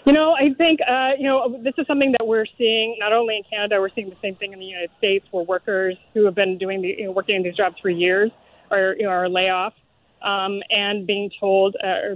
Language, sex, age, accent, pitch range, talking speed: English, female, 20-39, American, 185-210 Hz, 255 wpm